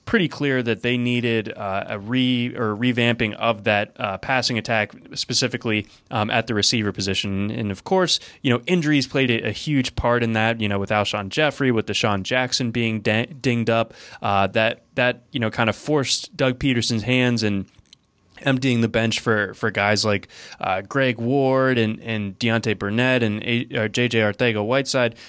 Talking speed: 175 wpm